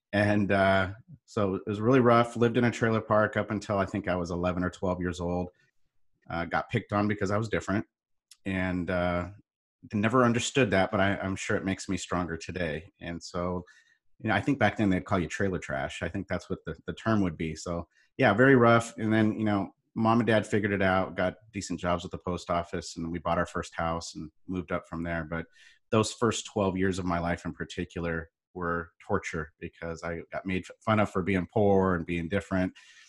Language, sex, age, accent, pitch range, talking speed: English, male, 30-49, American, 85-105 Hz, 225 wpm